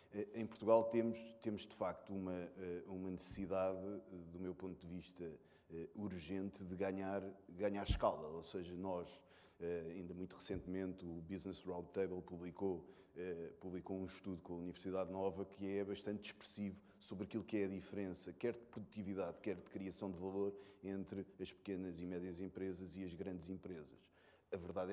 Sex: male